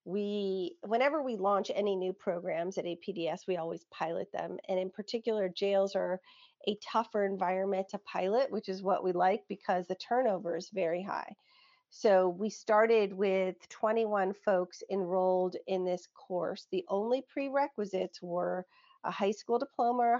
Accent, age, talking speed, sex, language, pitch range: American, 40-59, 155 wpm, female, English, 185-230 Hz